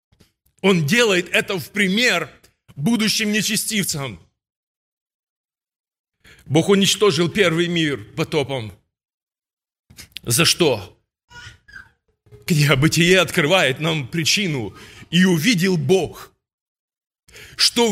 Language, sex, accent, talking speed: Russian, male, native, 75 wpm